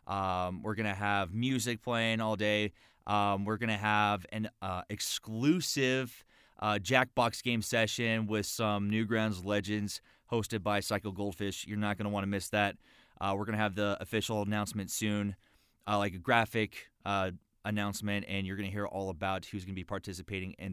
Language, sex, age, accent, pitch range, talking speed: English, male, 20-39, American, 100-110 Hz, 185 wpm